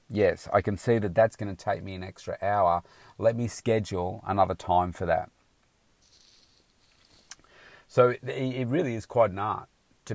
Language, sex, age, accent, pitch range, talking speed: English, male, 30-49, Australian, 90-110 Hz, 165 wpm